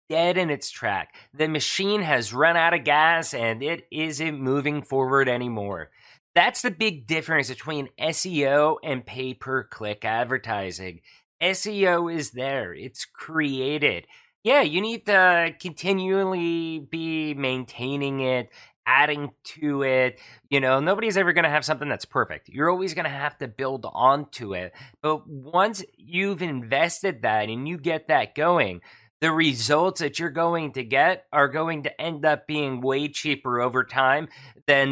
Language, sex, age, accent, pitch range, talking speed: English, male, 30-49, American, 130-165 Hz, 155 wpm